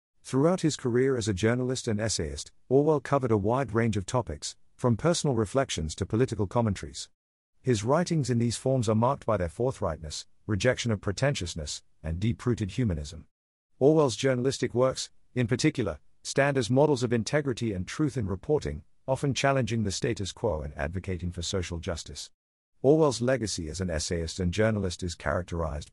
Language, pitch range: English, 90-125 Hz